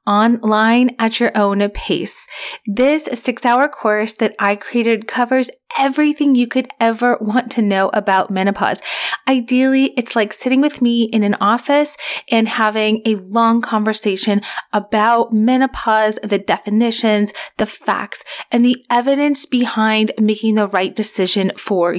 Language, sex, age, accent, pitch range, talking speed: English, female, 30-49, American, 210-255 Hz, 140 wpm